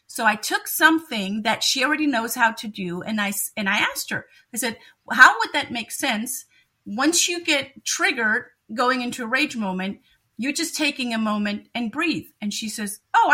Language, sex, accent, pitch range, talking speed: English, female, American, 220-295 Hz, 195 wpm